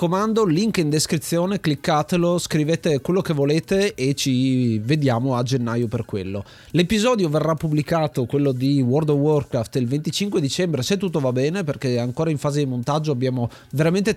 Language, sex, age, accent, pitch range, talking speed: Italian, male, 30-49, native, 130-175 Hz, 165 wpm